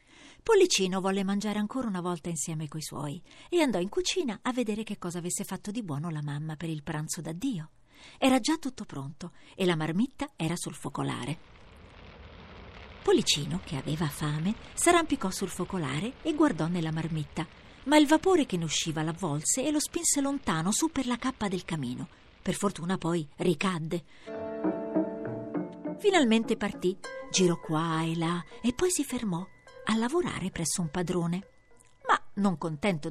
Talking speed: 160 wpm